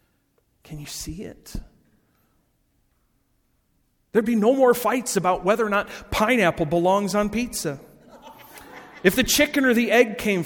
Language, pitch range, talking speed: English, 155-220 Hz, 140 wpm